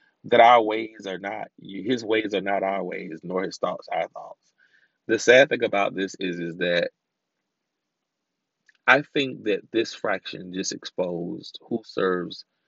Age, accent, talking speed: 30-49, American, 155 wpm